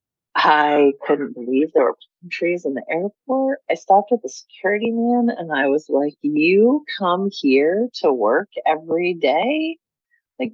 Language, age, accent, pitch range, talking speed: English, 30-49, American, 150-250 Hz, 160 wpm